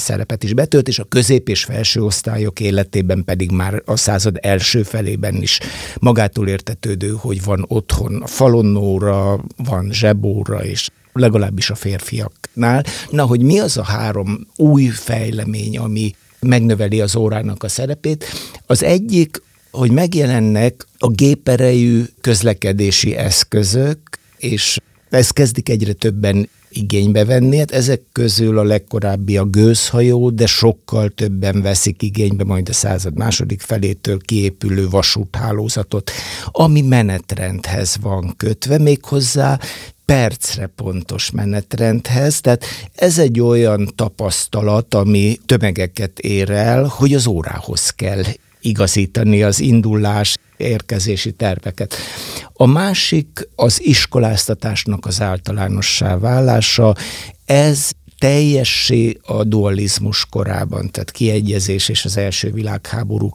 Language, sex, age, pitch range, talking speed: Hungarian, male, 60-79, 100-120 Hz, 115 wpm